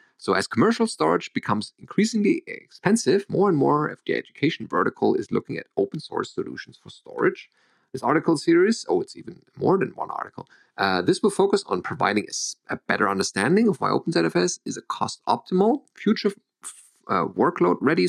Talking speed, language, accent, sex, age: 165 wpm, English, German, male, 30-49